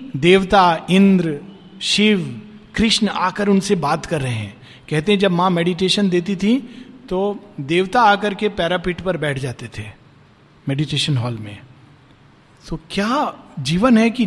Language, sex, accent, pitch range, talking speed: Hindi, male, native, 150-210 Hz, 145 wpm